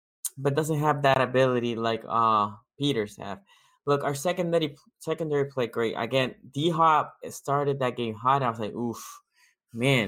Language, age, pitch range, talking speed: English, 20-39, 125-155 Hz, 160 wpm